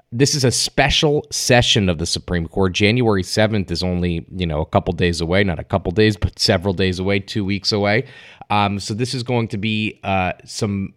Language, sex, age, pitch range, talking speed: English, male, 30-49, 95-120 Hz, 215 wpm